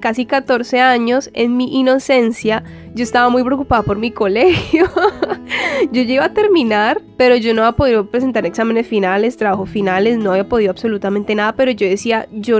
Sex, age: female, 10-29